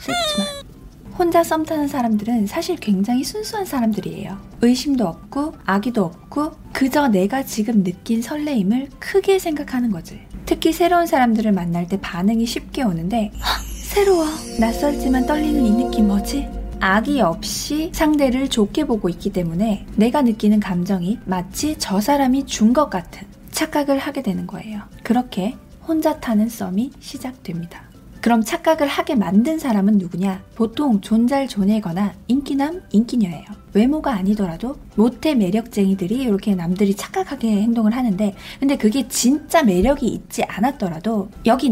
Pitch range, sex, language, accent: 200-285 Hz, female, Korean, native